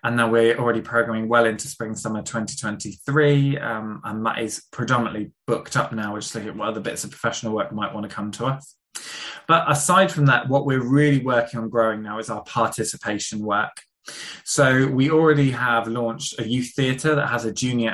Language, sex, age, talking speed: English, male, 20-39, 205 wpm